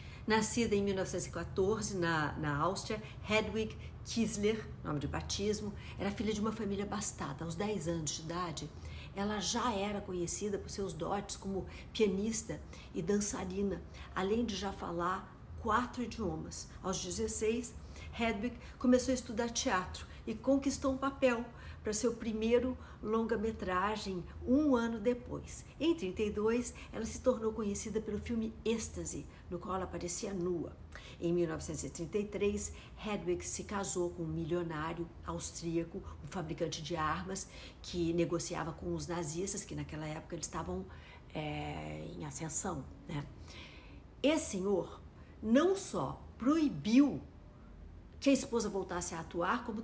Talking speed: 130 wpm